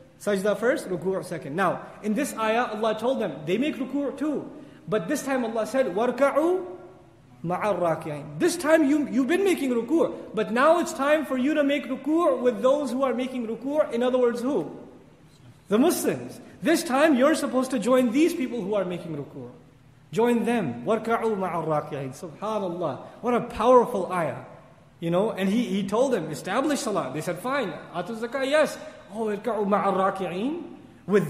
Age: 30-49